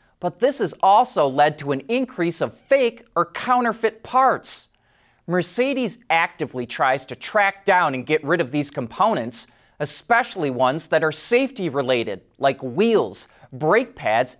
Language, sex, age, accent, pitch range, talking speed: English, male, 30-49, American, 150-230 Hz, 145 wpm